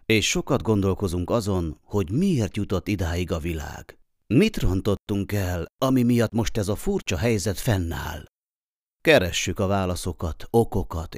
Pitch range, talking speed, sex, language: 90-115 Hz, 135 wpm, male, Hungarian